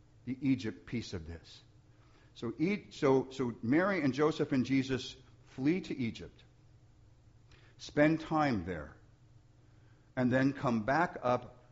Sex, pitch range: male, 110-130 Hz